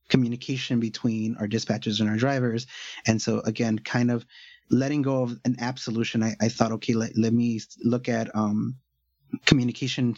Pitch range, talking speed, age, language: 115-130 Hz, 170 wpm, 30-49, English